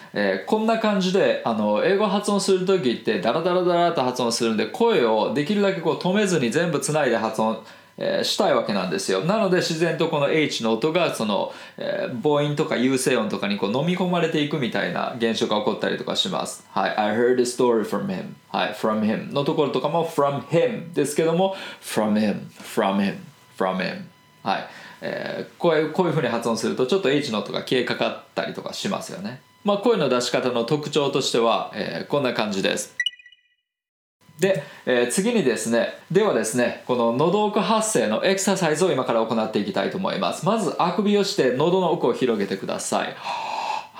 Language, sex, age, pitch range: Japanese, male, 20-39, 115-195 Hz